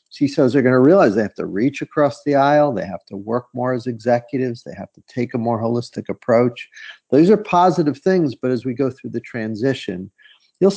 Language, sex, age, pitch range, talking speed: English, male, 50-69, 105-140 Hz, 215 wpm